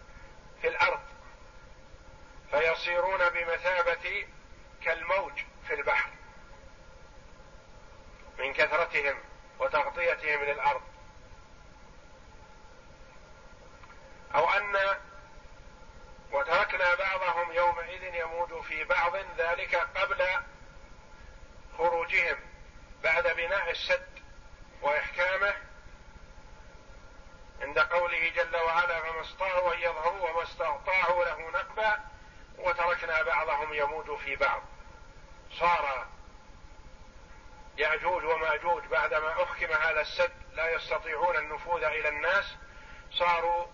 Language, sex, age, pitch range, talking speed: Arabic, male, 50-69, 145-180 Hz, 75 wpm